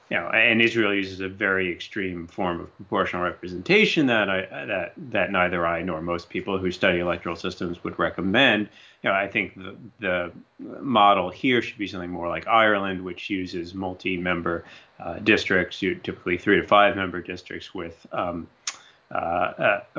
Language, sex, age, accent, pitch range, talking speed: English, male, 30-49, American, 90-100 Hz, 170 wpm